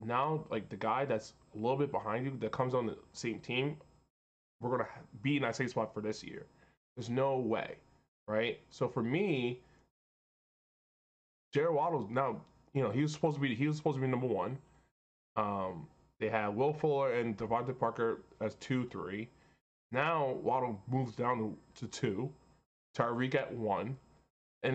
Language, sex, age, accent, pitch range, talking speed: English, male, 20-39, American, 115-155 Hz, 170 wpm